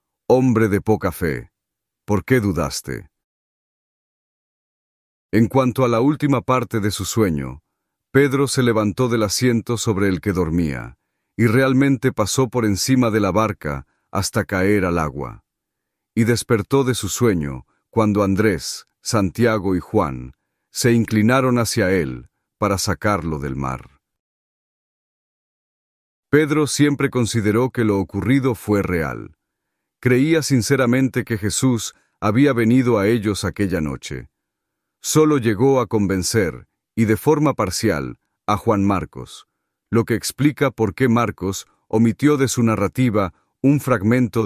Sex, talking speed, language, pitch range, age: male, 130 wpm, Spanish, 95-125 Hz, 50-69